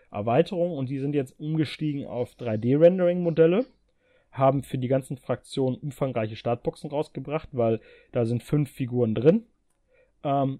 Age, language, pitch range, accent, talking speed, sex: 30-49, German, 115-150 Hz, German, 130 wpm, male